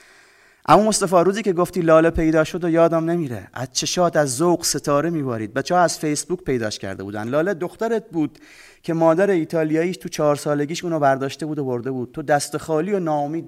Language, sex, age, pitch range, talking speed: Persian, male, 30-49, 120-165 Hz, 200 wpm